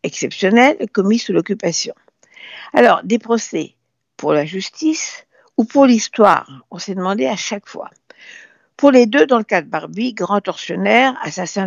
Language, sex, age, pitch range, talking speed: French, female, 60-79, 190-285 Hz, 155 wpm